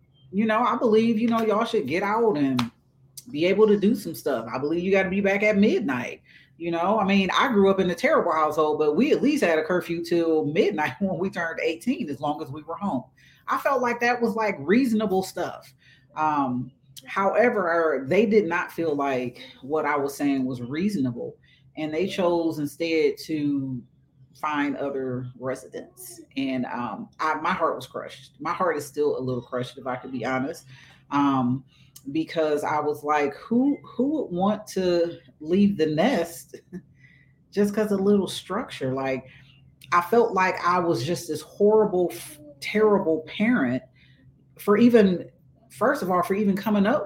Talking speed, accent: 185 wpm, American